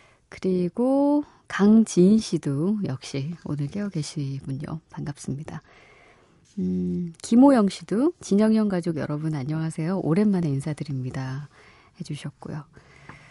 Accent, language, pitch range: native, Korean, 145-195 Hz